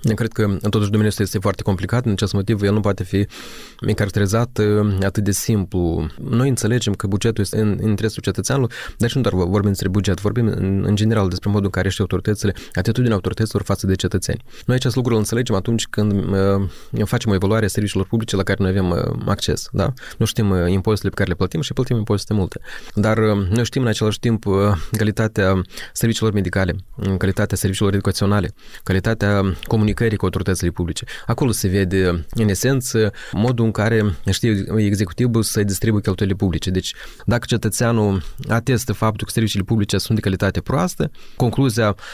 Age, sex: 20-39, male